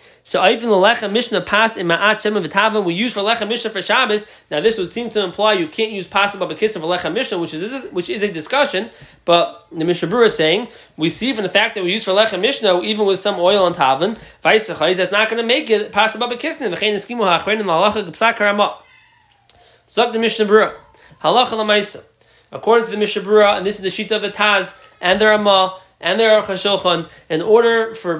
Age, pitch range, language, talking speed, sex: 20-39, 185-225 Hz, English, 215 wpm, male